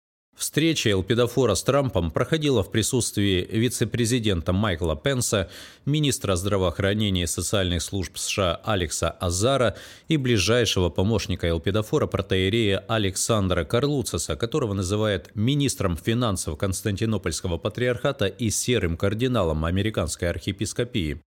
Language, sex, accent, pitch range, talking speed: Russian, male, native, 90-120 Hz, 100 wpm